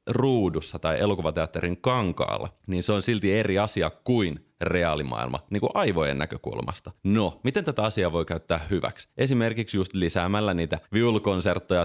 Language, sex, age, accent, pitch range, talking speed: Finnish, male, 30-49, native, 85-100 Hz, 140 wpm